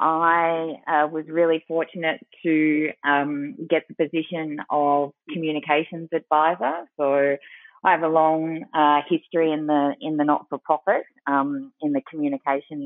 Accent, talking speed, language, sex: Australian, 145 wpm, English, female